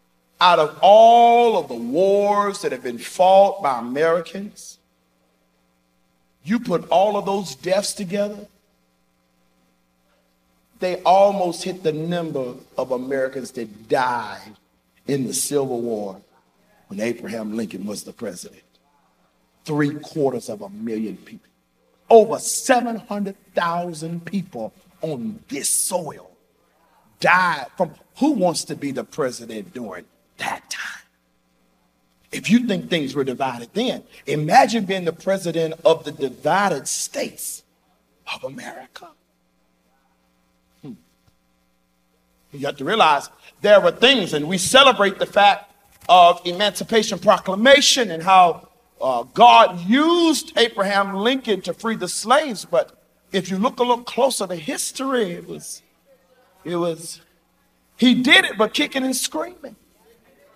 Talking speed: 125 wpm